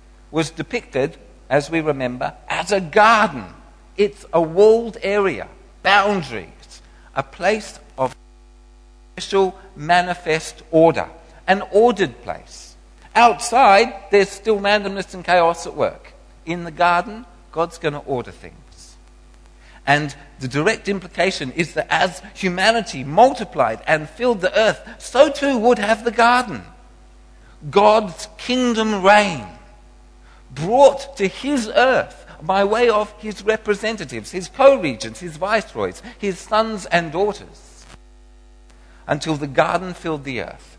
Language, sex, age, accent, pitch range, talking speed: English, male, 50-69, British, 125-205 Hz, 120 wpm